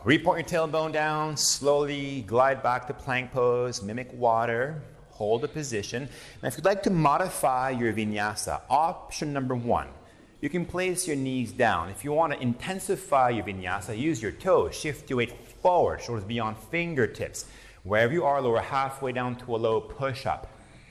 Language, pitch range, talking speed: Hebrew, 110-160 Hz, 170 wpm